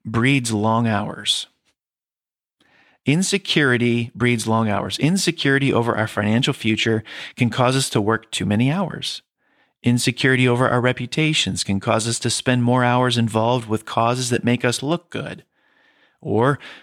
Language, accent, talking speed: English, American, 145 wpm